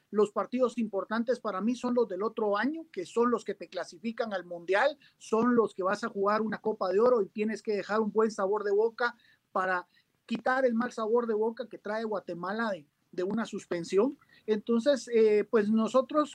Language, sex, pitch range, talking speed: Spanish, male, 210-255 Hz, 200 wpm